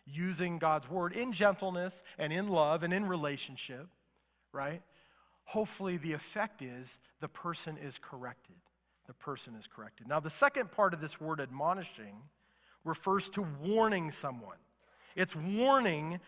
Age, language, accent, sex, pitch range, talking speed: 40-59, English, American, male, 155-220 Hz, 140 wpm